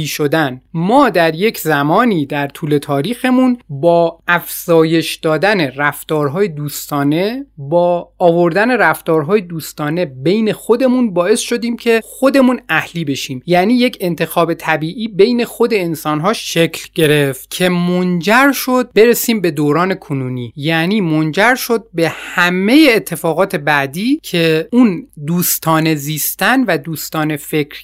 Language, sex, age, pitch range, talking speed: Persian, male, 30-49, 160-220 Hz, 120 wpm